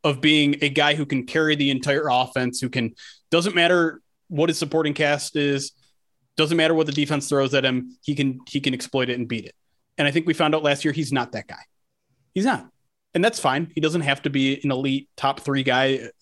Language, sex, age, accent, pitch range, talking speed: English, male, 30-49, American, 135-165 Hz, 235 wpm